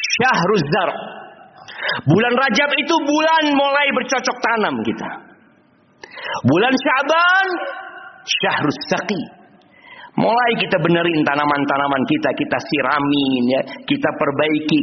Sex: male